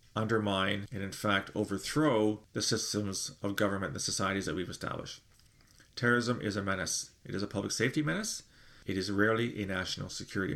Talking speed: 175 wpm